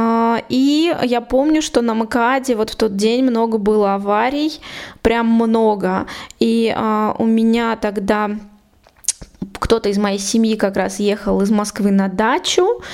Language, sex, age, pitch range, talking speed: Russian, female, 20-39, 215-250 Hz, 145 wpm